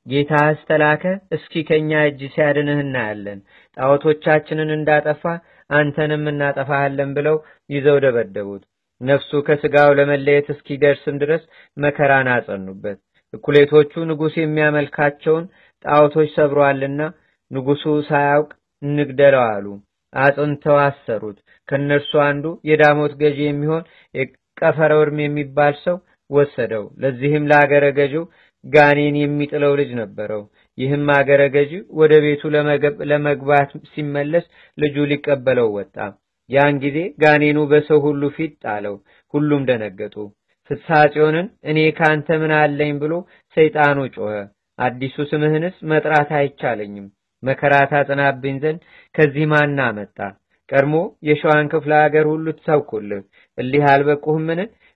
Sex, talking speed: male, 100 wpm